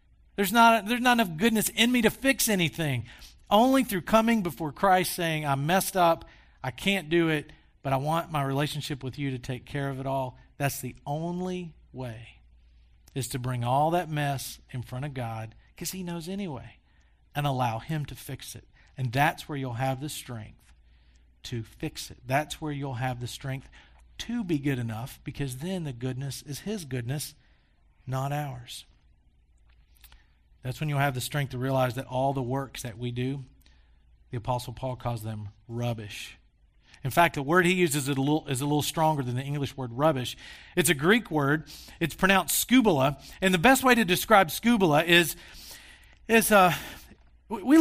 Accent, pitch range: American, 125-180 Hz